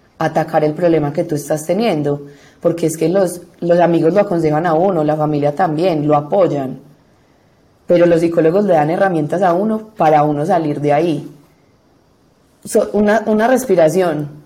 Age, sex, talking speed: 30-49, female, 160 wpm